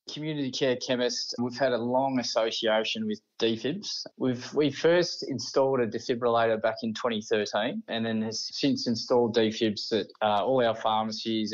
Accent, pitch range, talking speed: Australian, 110-135 Hz, 155 wpm